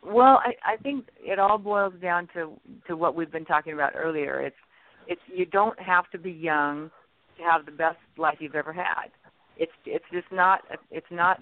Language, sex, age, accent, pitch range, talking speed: English, female, 50-69, American, 155-190 Hz, 205 wpm